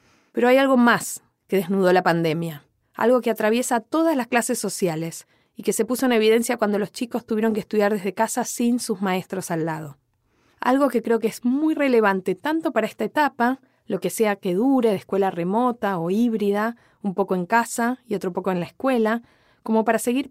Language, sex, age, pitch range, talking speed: Spanish, female, 20-39, 195-245 Hz, 200 wpm